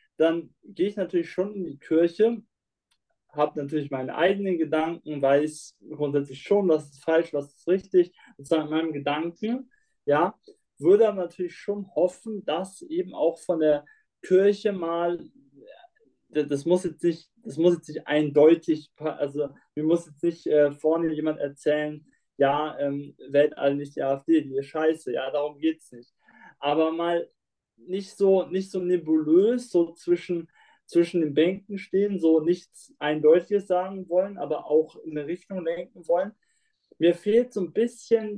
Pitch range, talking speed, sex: 150-190 Hz, 155 wpm, male